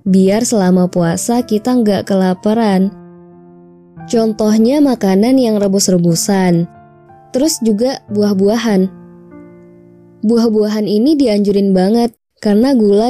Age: 20-39